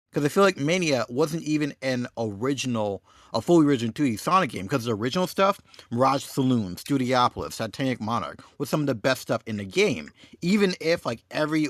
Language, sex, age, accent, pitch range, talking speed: English, male, 50-69, American, 110-155 Hz, 190 wpm